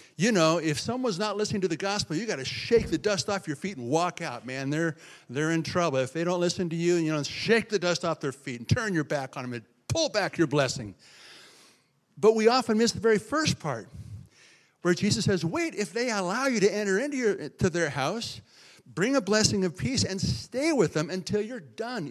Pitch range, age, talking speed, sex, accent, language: 165-215 Hz, 50-69, 230 wpm, male, American, English